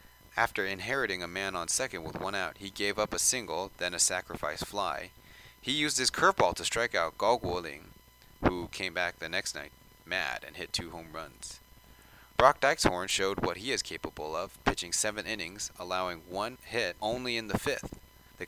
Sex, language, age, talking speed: male, English, 30-49, 185 wpm